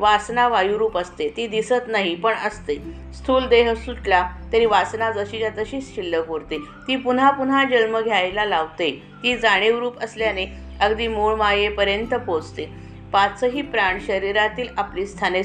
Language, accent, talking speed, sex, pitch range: Marathi, native, 85 wpm, female, 185-230 Hz